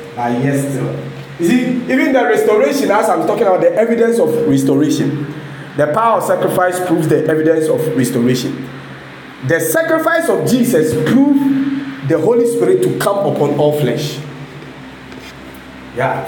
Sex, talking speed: male, 145 wpm